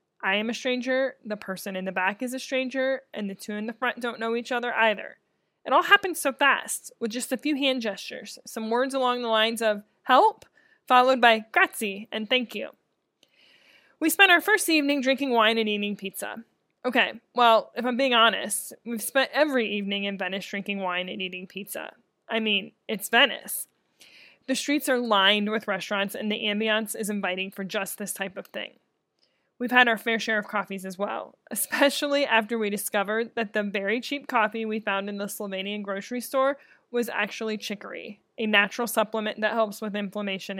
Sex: female